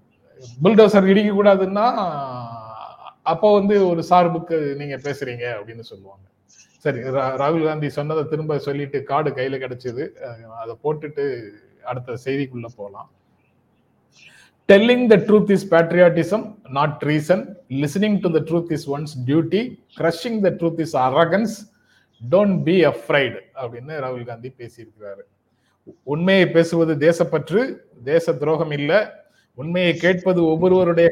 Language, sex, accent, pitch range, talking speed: Tamil, male, native, 140-185 Hz, 100 wpm